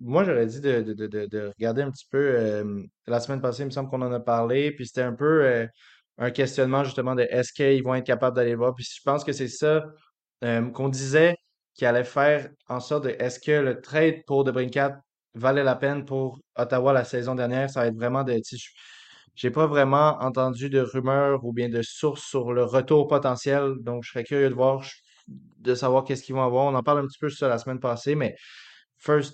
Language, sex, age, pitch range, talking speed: French, male, 20-39, 120-140 Hz, 230 wpm